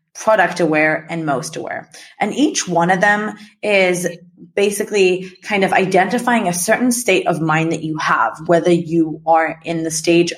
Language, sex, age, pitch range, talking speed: English, female, 30-49, 160-210 Hz, 170 wpm